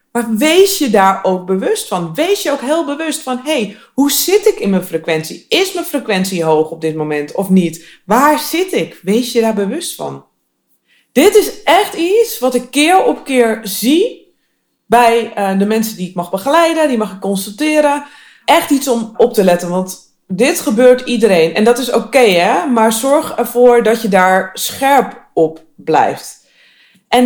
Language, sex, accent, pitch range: Dutch, female, Dutch, 185-265 Hz